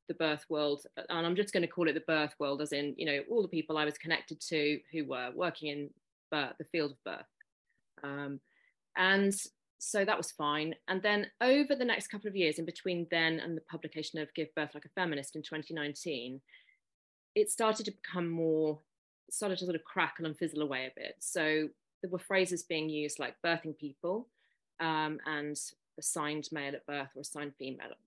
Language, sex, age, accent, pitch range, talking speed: English, female, 30-49, British, 145-180 Hz, 200 wpm